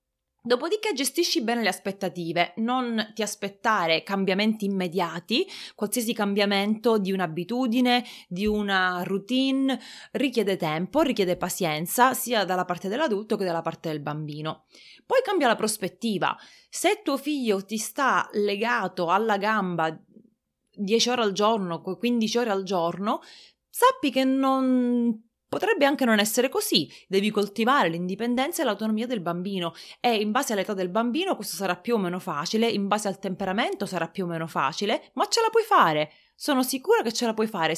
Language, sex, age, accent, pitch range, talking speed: Italian, female, 30-49, native, 190-250 Hz, 155 wpm